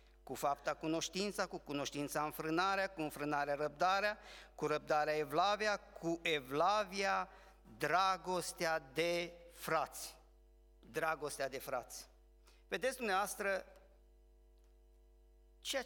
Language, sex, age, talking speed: Romanian, male, 50-69, 85 wpm